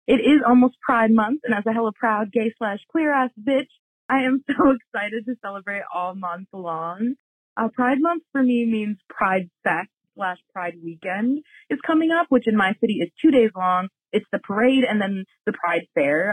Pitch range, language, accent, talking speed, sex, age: 205-285 Hz, English, American, 200 wpm, female, 20-39